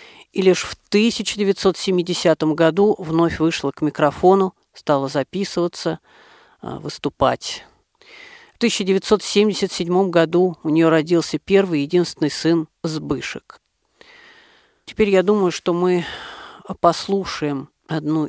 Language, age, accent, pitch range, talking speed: Russian, 40-59, native, 160-200 Hz, 95 wpm